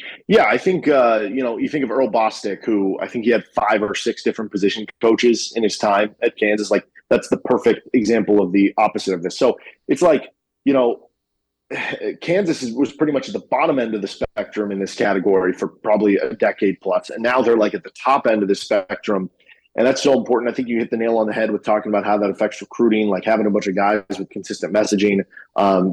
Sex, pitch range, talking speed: male, 105-120 Hz, 240 wpm